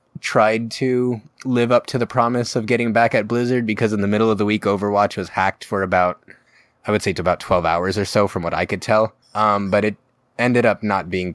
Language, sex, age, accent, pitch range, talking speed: English, male, 20-39, American, 95-115 Hz, 240 wpm